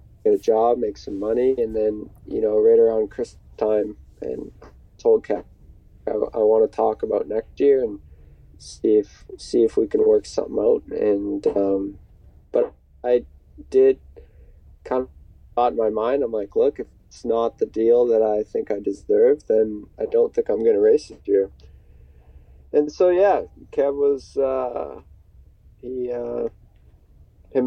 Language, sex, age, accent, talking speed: English, male, 20-39, American, 170 wpm